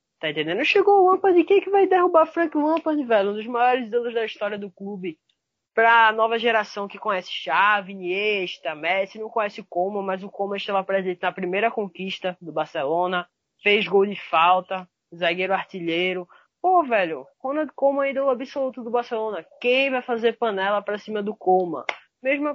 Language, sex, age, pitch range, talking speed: Portuguese, female, 20-39, 185-245 Hz, 180 wpm